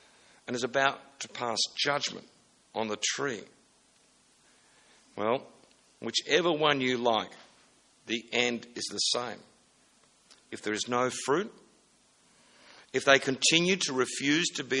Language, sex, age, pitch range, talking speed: English, male, 60-79, 120-150 Hz, 125 wpm